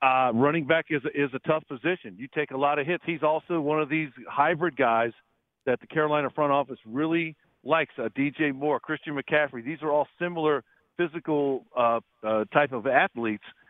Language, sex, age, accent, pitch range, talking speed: English, male, 50-69, American, 125-155 Hz, 190 wpm